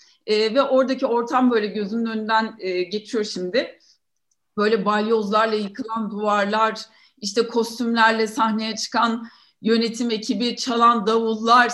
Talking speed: 110 wpm